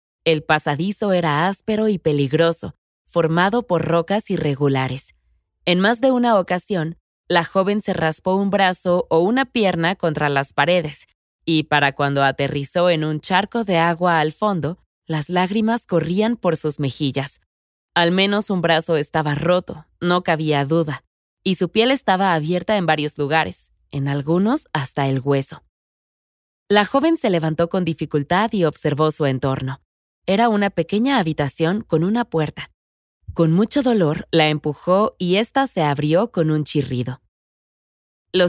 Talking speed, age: 150 wpm, 20-39